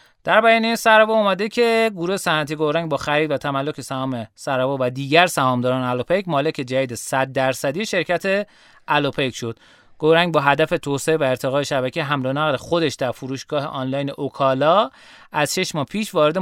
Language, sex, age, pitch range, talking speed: Persian, male, 30-49, 135-195 Hz, 170 wpm